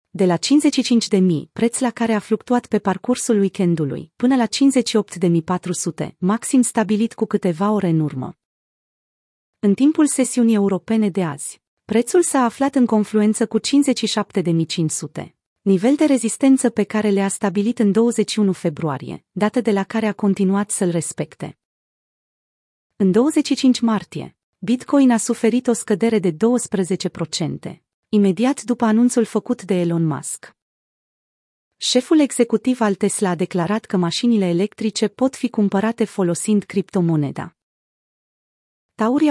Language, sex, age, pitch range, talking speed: Romanian, female, 30-49, 185-235 Hz, 130 wpm